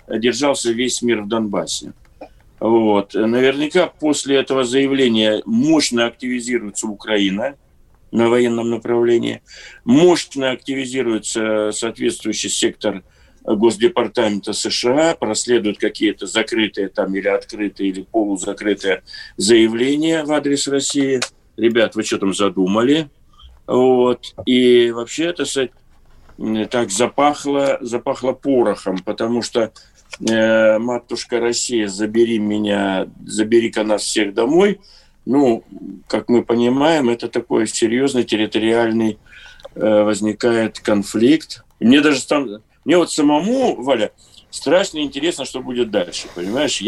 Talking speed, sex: 105 wpm, male